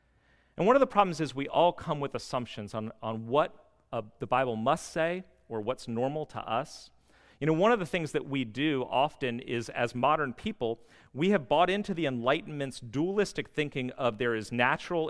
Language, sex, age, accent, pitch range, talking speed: English, male, 40-59, American, 120-165 Hz, 200 wpm